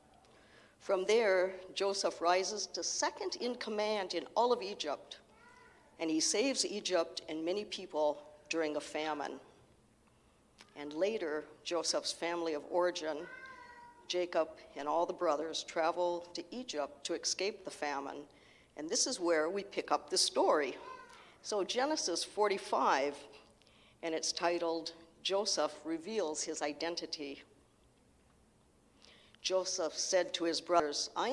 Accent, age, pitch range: American, 60-79, 160-240 Hz